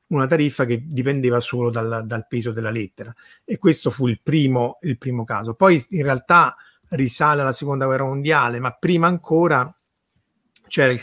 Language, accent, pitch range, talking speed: Italian, native, 120-150 Hz, 165 wpm